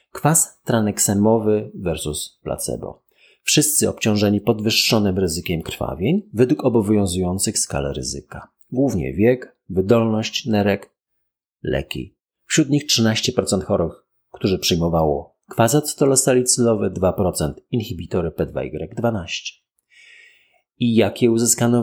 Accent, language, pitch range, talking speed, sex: native, Polish, 100-130 Hz, 90 wpm, male